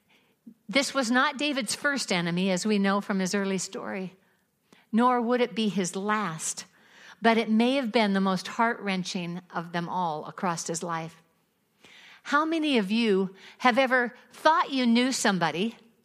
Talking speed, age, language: 160 wpm, 50-69, English